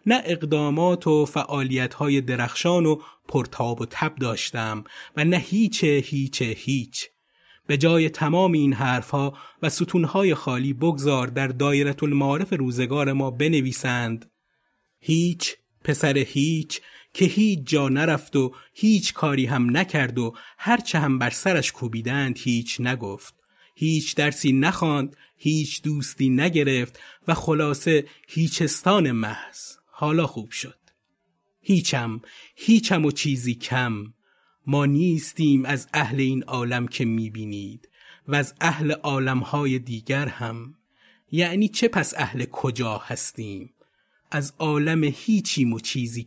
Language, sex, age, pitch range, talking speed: Persian, male, 30-49, 130-165 Hz, 120 wpm